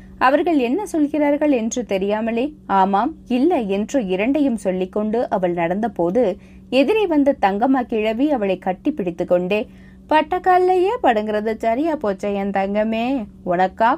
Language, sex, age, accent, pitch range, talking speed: Tamil, female, 20-39, native, 195-295 Hz, 120 wpm